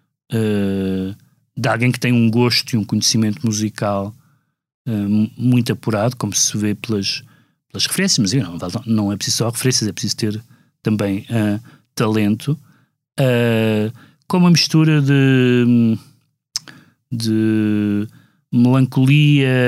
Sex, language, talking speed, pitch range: male, Portuguese, 110 wpm, 110-140 Hz